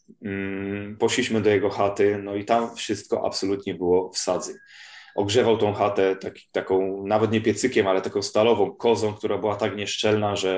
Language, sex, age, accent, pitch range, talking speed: Polish, male, 20-39, native, 100-120 Hz, 170 wpm